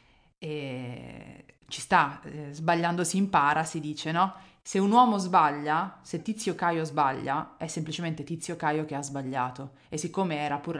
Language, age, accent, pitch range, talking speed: Italian, 20-39, native, 150-175 Hz, 155 wpm